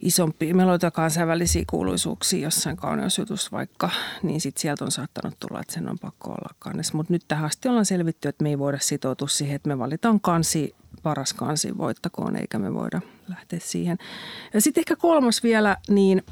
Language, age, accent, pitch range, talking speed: Finnish, 40-59, native, 165-210 Hz, 180 wpm